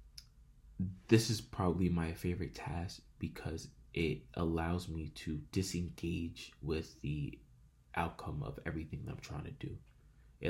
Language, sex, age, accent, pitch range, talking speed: English, male, 20-39, American, 80-90 Hz, 130 wpm